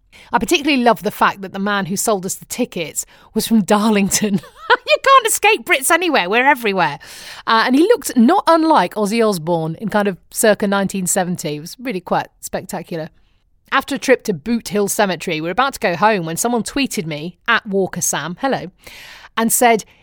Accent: British